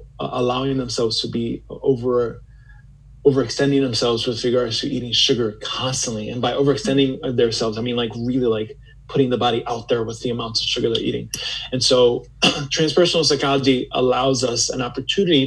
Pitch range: 120-140 Hz